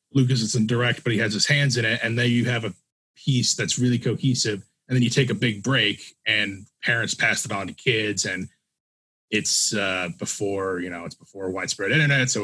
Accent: American